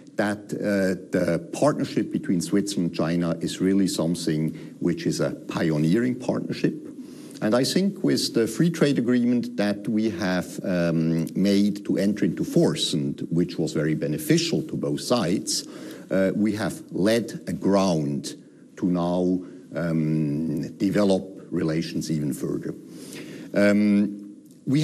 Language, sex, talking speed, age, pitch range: English, male, 135 wpm, 50-69, 85-110 Hz